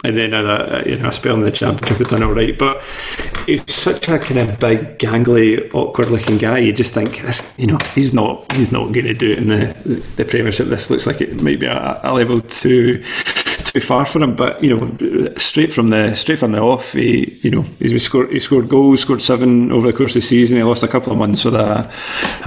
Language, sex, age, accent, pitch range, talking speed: English, male, 30-49, British, 110-125 Hz, 250 wpm